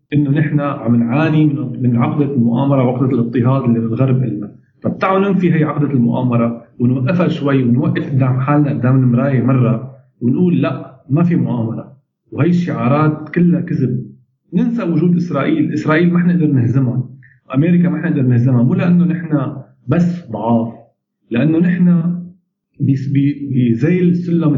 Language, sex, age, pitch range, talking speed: Arabic, male, 40-59, 125-155 Hz, 135 wpm